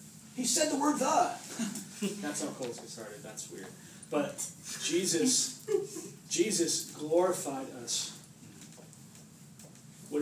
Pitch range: 145-185 Hz